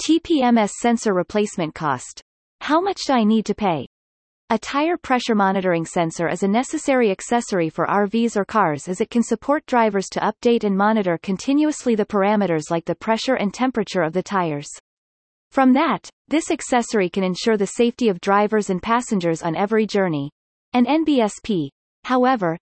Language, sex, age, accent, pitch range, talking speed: English, female, 30-49, American, 180-245 Hz, 165 wpm